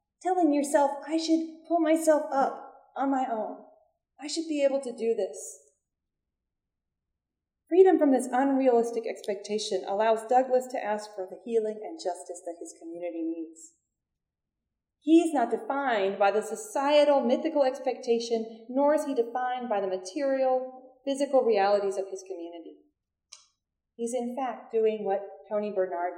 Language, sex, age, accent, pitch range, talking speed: English, female, 40-59, American, 200-275 Hz, 145 wpm